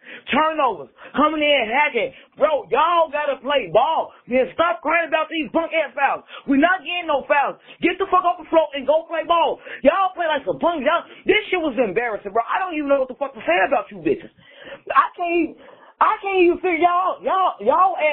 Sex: male